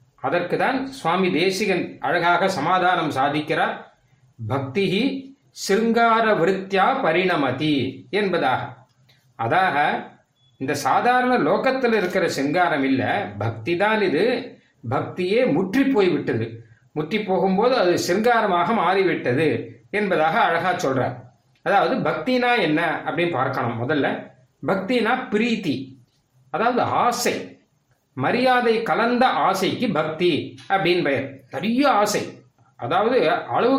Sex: male